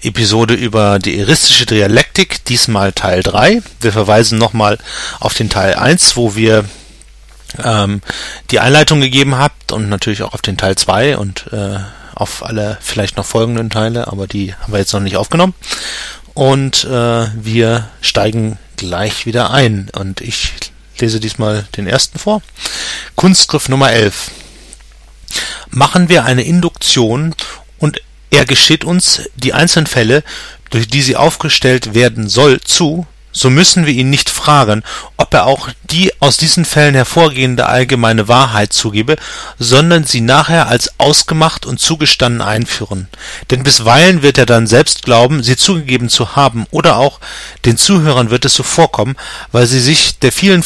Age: 40-59